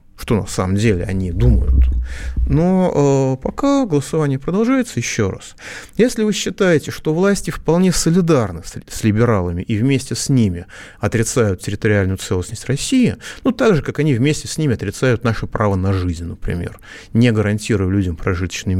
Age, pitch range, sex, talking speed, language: 30-49, 100-155 Hz, male, 155 wpm, Russian